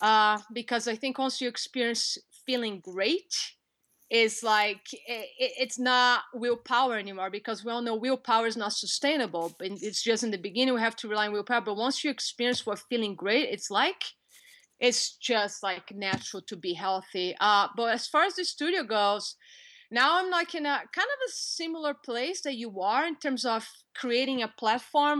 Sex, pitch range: female, 220-260 Hz